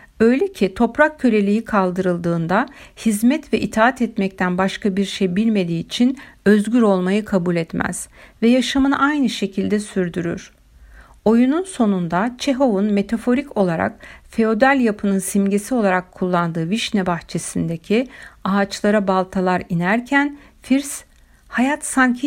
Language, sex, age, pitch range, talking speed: Turkish, female, 60-79, 185-230 Hz, 110 wpm